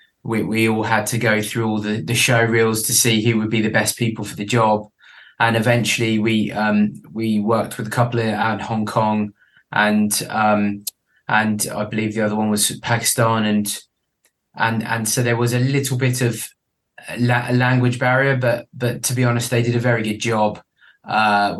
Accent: British